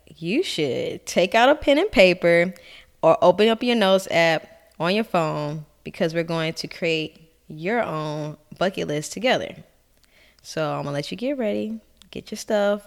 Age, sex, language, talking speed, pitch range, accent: 10-29, female, English, 175 wpm, 155-195 Hz, American